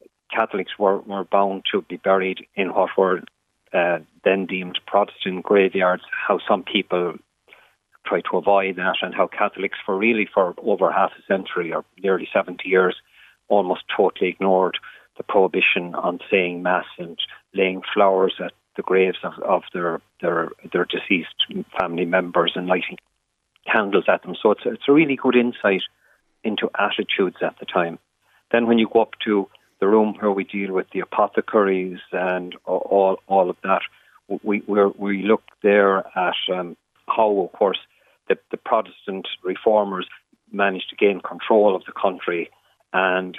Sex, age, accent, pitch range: male, 40-59, Irish, 95-105 Hz